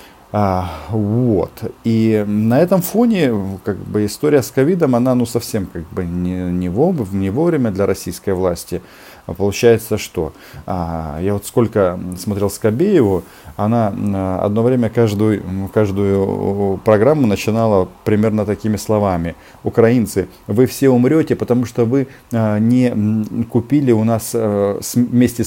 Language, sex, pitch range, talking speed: Russian, male, 95-120 Hz, 120 wpm